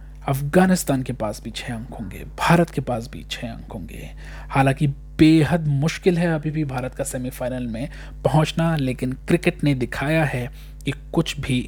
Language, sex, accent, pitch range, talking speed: Hindi, male, native, 125-165 Hz, 170 wpm